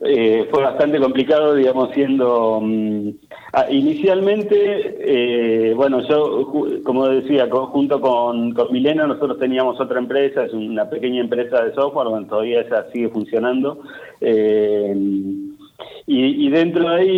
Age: 40-59